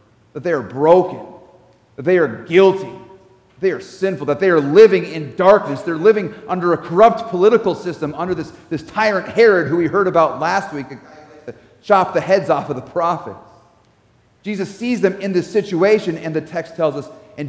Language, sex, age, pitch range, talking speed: English, male, 40-59, 125-195 Hz, 185 wpm